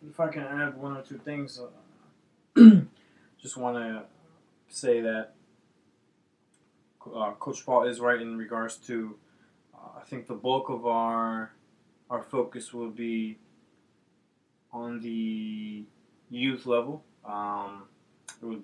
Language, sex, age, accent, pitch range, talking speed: English, male, 20-39, American, 105-120 Hz, 125 wpm